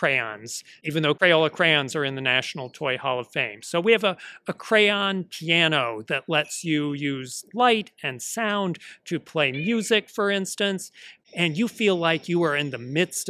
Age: 40-59